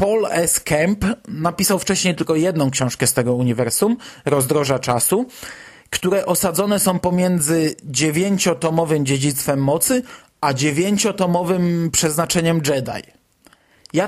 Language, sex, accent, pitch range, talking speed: Polish, male, native, 145-190 Hz, 105 wpm